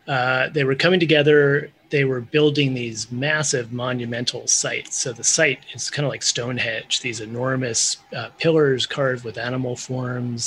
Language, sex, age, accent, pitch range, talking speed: English, male, 30-49, American, 120-145 Hz, 160 wpm